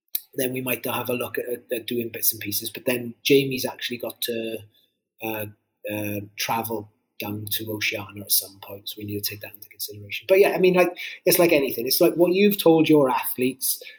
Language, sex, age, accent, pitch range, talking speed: English, male, 30-49, British, 115-155 Hz, 210 wpm